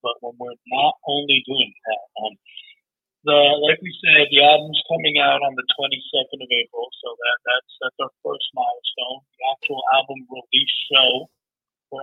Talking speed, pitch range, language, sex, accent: 170 wpm, 125-150 Hz, English, male, American